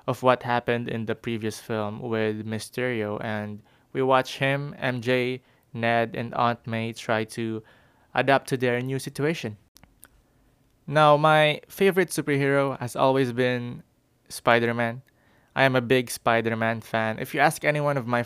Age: 20-39